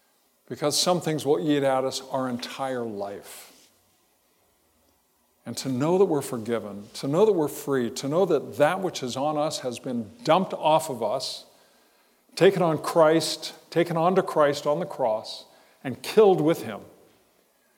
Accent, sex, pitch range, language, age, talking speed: American, male, 130-175 Hz, English, 50-69, 160 wpm